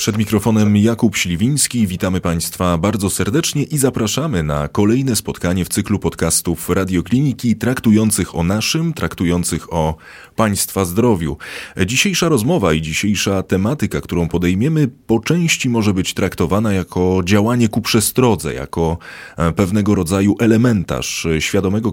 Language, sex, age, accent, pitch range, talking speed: Polish, male, 30-49, native, 90-120 Hz, 125 wpm